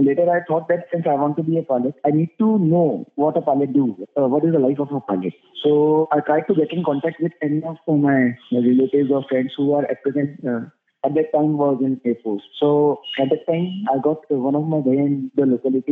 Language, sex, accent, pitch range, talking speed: English, male, Indian, 135-170 Hz, 255 wpm